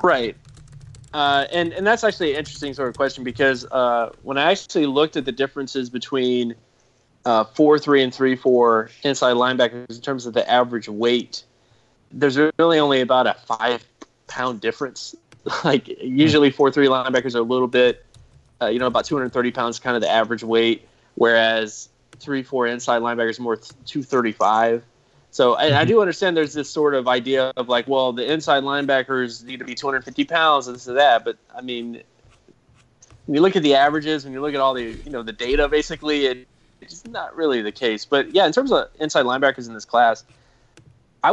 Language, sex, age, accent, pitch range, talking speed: English, male, 20-39, American, 120-140 Hz, 190 wpm